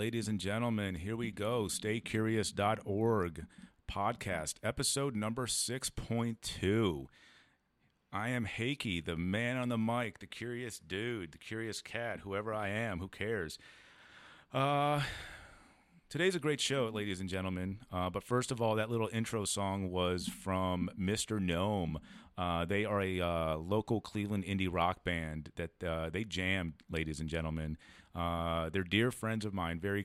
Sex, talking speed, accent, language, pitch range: male, 150 wpm, American, English, 85-110 Hz